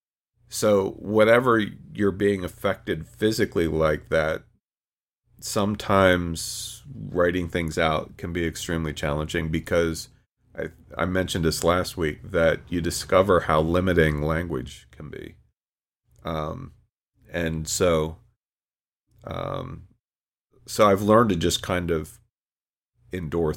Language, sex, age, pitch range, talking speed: English, male, 40-59, 80-100 Hz, 110 wpm